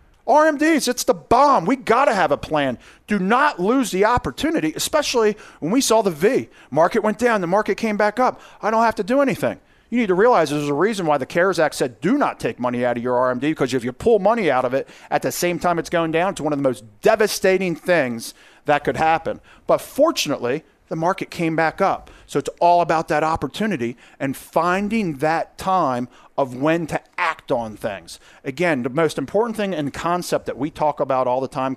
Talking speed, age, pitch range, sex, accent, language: 220 wpm, 40-59, 145-210 Hz, male, American, English